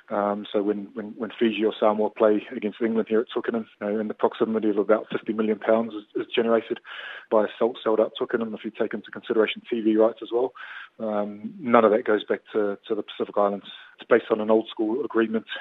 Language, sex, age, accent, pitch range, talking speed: English, male, 20-39, British, 105-115 Hz, 210 wpm